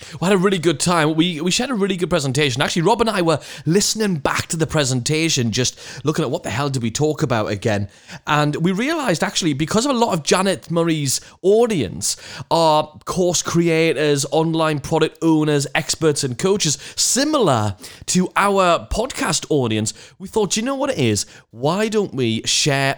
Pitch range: 140-190 Hz